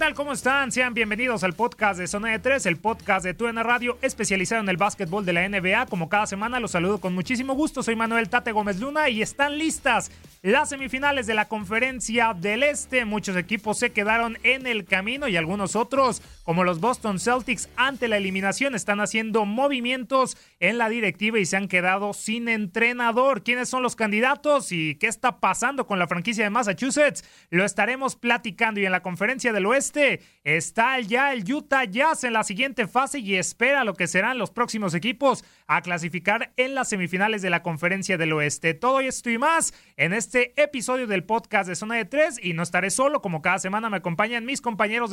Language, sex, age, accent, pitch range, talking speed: Spanish, male, 30-49, Mexican, 200-255 Hz, 195 wpm